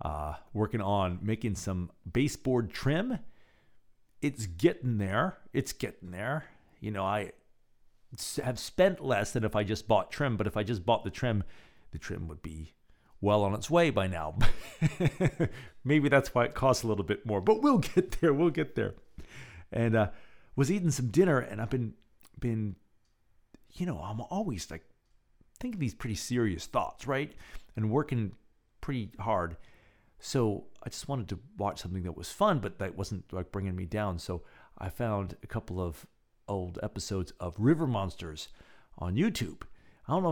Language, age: English, 40-59